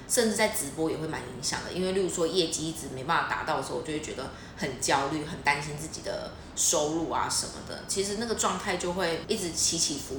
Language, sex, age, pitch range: Chinese, female, 20-39, 155-195 Hz